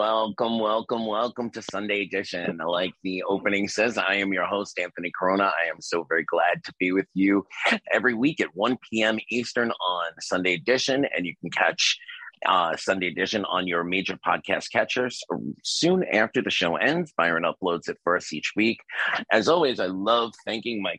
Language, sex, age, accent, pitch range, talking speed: English, male, 30-49, American, 90-110 Hz, 185 wpm